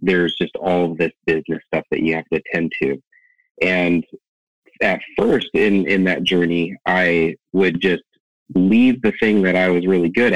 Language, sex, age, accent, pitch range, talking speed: English, male, 30-49, American, 80-95 Hz, 180 wpm